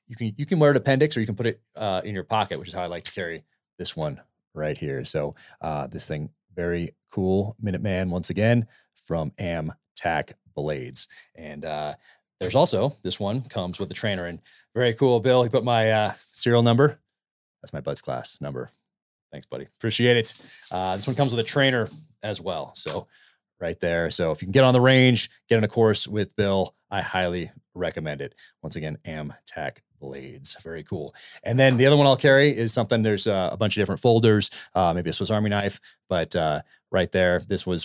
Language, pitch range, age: English, 85-115 Hz, 30-49